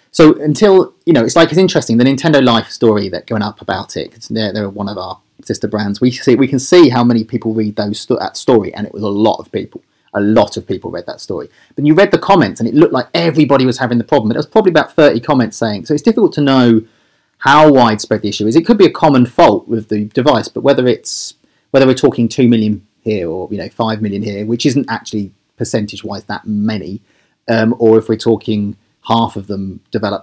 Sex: male